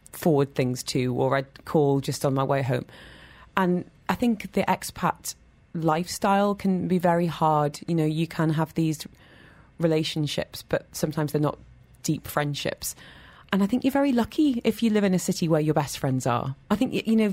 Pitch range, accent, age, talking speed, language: 145-185 Hz, British, 30-49, 190 wpm, English